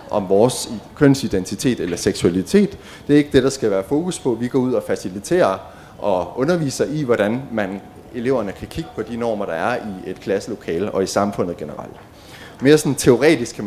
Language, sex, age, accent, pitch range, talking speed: Danish, male, 30-49, native, 100-135 Hz, 190 wpm